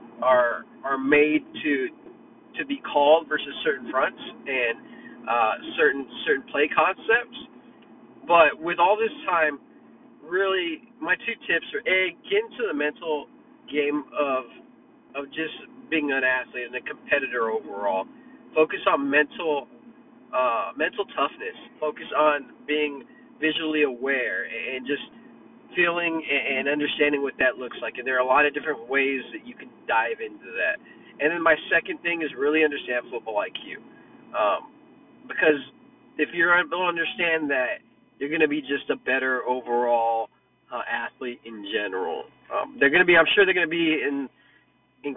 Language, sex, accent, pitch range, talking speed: English, male, American, 140-195 Hz, 160 wpm